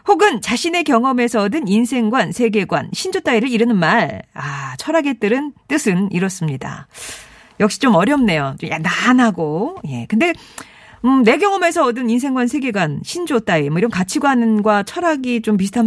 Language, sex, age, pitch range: Korean, female, 40-59, 175-265 Hz